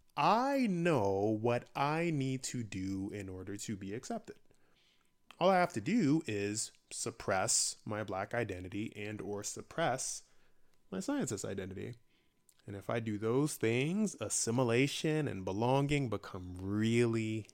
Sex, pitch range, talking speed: male, 105-155 Hz, 135 wpm